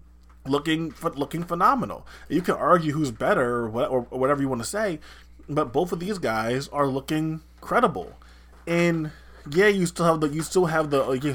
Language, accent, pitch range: English, American, 125-160 Hz